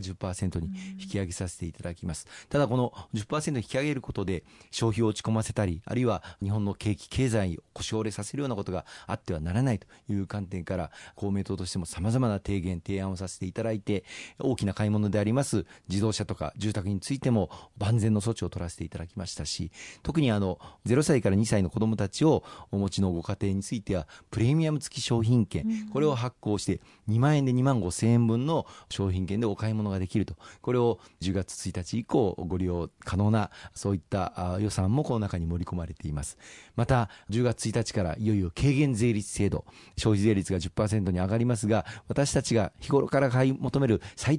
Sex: male